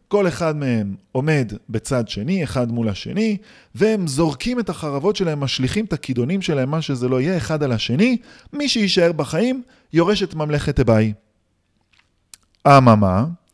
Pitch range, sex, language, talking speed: 115-155 Hz, male, Hebrew, 145 wpm